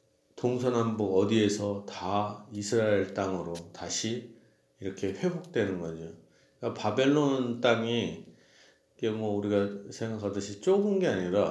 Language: Korean